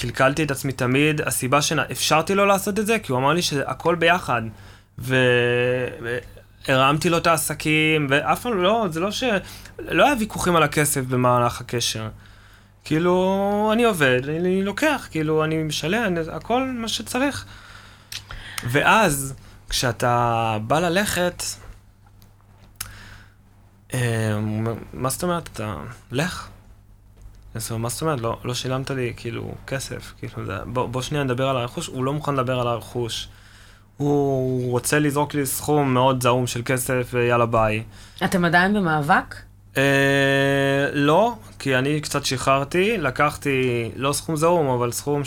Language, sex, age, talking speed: Hebrew, male, 20-39, 125 wpm